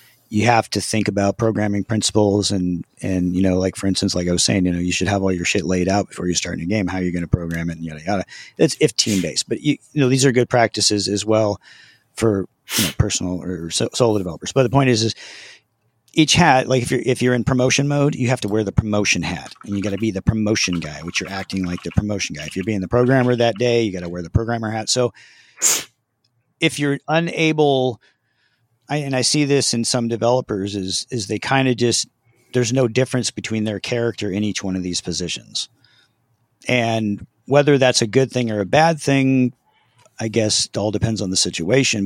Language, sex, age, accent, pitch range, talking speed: English, male, 40-59, American, 95-120 Hz, 230 wpm